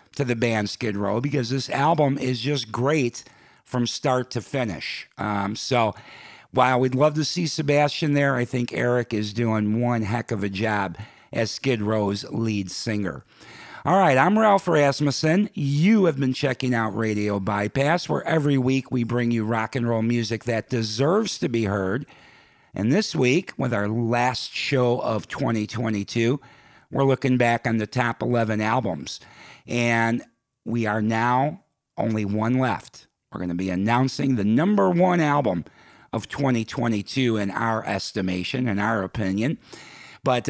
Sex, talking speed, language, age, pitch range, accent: male, 160 wpm, English, 50-69, 110-140 Hz, American